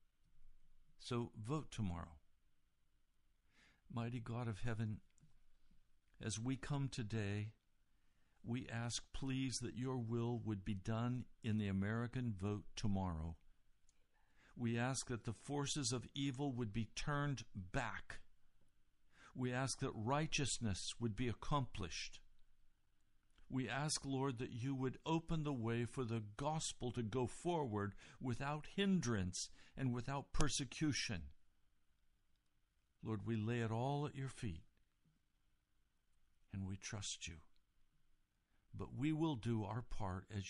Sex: male